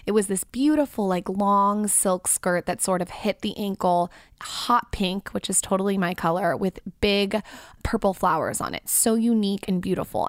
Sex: female